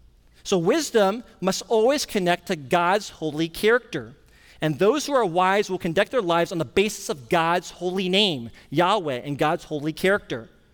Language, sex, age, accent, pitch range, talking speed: English, male, 40-59, American, 150-205 Hz, 170 wpm